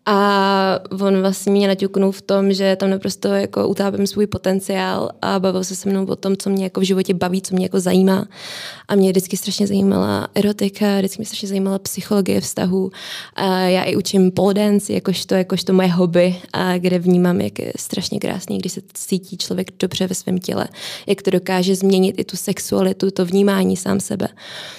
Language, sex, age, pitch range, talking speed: Czech, female, 20-39, 185-205 Hz, 195 wpm